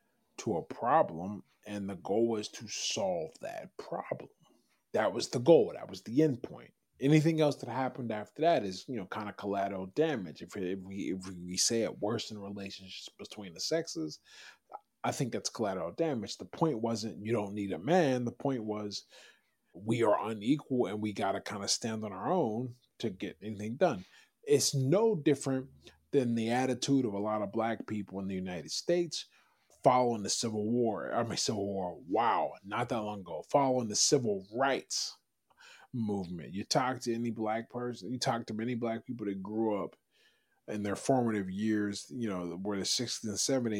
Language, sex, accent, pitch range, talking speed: English, male, American, 100-125 Hz, 190 wpm